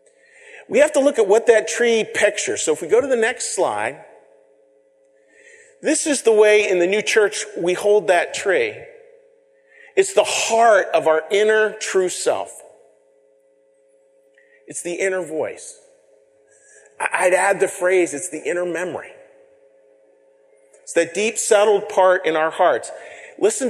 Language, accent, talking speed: English, American, 145 wpm